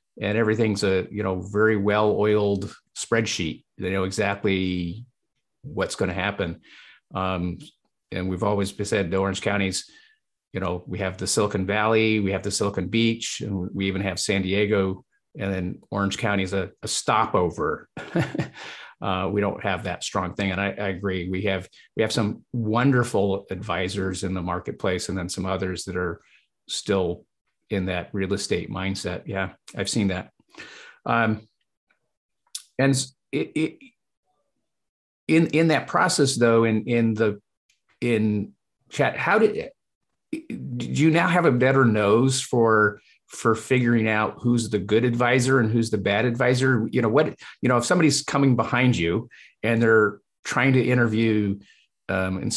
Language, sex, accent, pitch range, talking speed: English, male, American, 95-120 Hz, 160 wpm